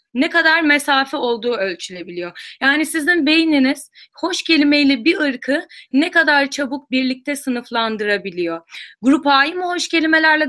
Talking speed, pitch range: 125 wpm, 225-300 Hz